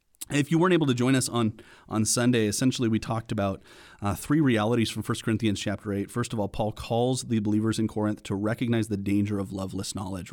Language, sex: English, male